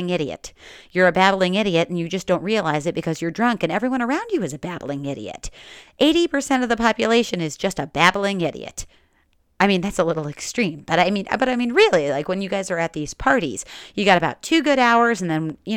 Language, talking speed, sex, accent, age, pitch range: English, 230 wpm, female, American, 40-59, 155-205 Hz